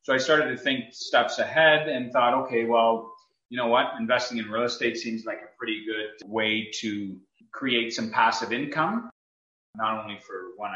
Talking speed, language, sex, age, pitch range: 185 wpm, English, male, 30-49, 110-125 Hz